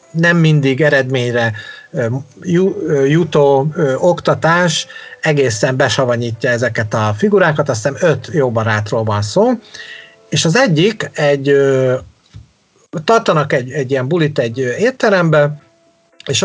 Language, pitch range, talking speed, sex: Hungarian, 135-170 Hz, 105 wpm, male